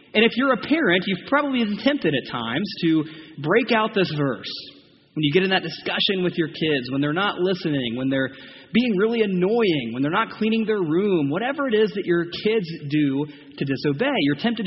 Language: English